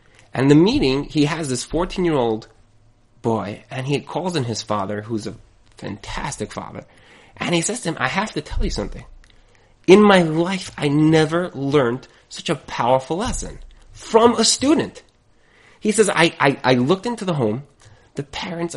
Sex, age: male, 20-39